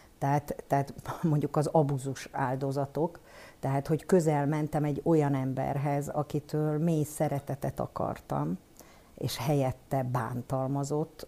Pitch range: 140-160 Hz